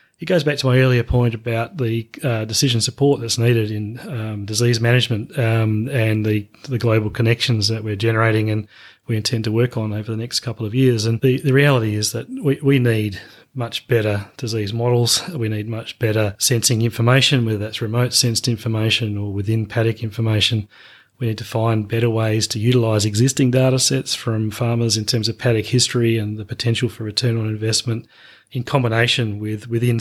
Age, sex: 30-49, male